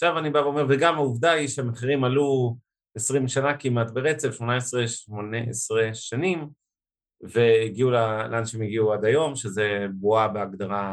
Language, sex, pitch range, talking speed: Hebrew, male, 110-130 Hz, 155 wpm